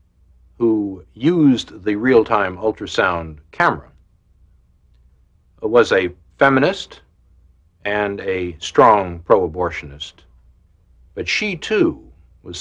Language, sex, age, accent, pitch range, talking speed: English, male, 60-79, American, 80-105 Hz, 80 wpm